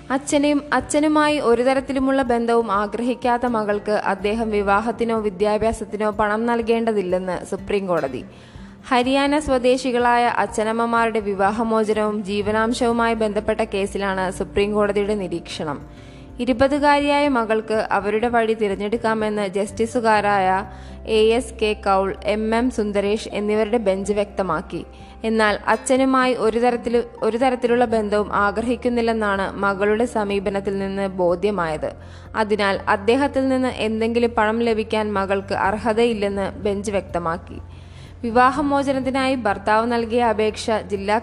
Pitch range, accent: 200-235 Hz, native